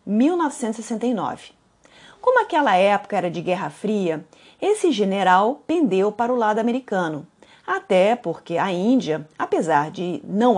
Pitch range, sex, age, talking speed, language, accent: 190-275 Hz, female, 40-59, 125 wpm, Portuguese, Brazilian